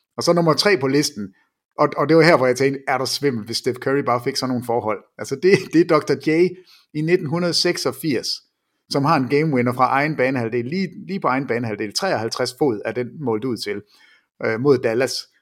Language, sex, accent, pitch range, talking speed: English, male, Danish, 125-175 Hz, 215 wpm